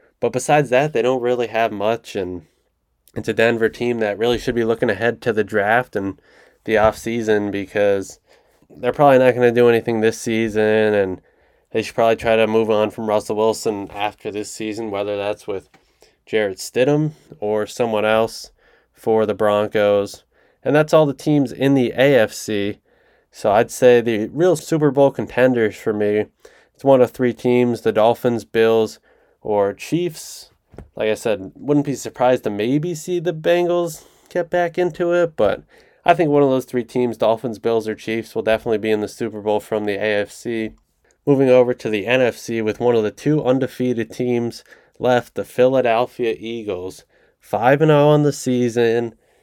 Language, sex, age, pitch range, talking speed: English, male, 20-39, 105-130 Hz, 175 wpm